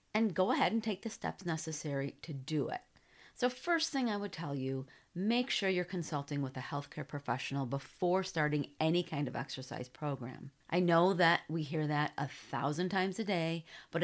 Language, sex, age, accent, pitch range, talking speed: English, female, 40-59, American, 140-170 Hz, 190 wpm